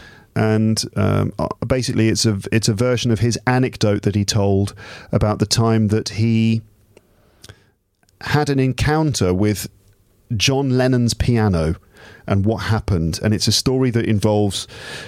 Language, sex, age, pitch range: English, male, 40-59, 100-125 Hz